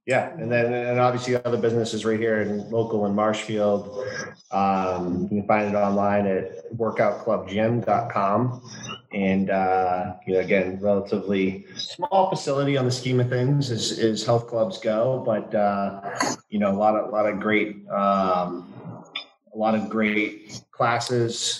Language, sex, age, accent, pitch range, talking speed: English, male, 30-49, American, 95-110 Hz, 165 wpm